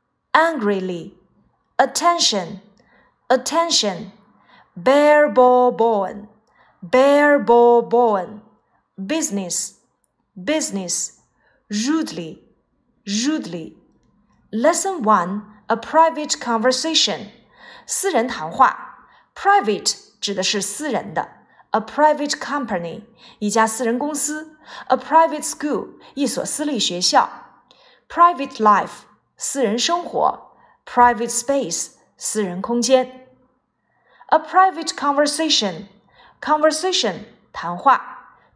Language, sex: Chinese, female